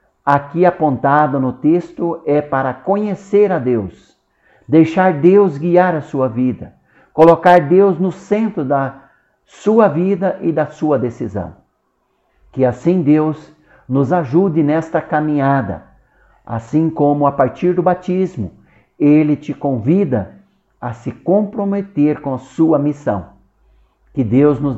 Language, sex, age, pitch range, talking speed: Portuguese, male, 60-79, 125-170 Hz, 125 wpm